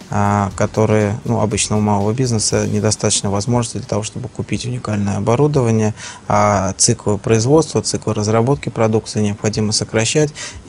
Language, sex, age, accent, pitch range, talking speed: Russian, male, 20-39, native, 100-115 Hz, 125 wpm